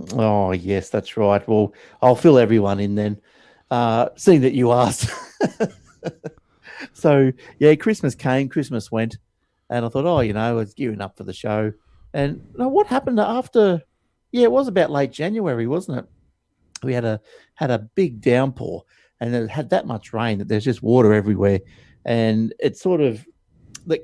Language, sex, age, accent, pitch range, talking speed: English, male, 50-69, Australian, 110-140 Hz, 175 wpm